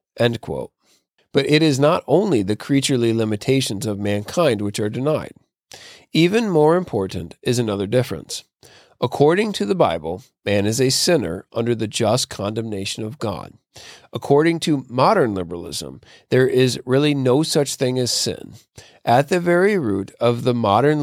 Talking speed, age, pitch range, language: 150 wpm, 40-59, 110-145 Hz, English